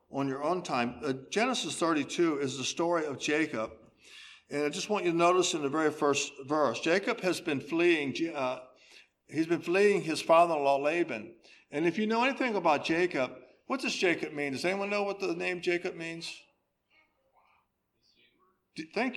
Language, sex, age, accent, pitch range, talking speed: English, male, 60-79, American, 140-200 Hz, 170 wpm